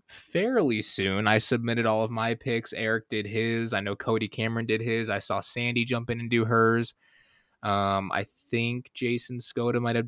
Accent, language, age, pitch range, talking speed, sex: American, English, 20-39, 100-120 Hz, 190 wpm, male